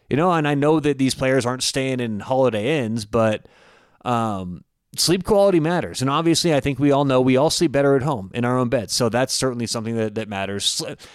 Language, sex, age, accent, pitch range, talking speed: English, male, 30-49, American, 120-160 Hz, 225 wpm